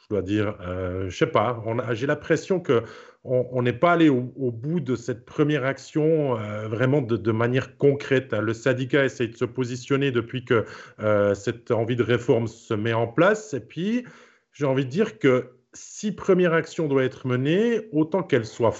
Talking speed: 200 wpm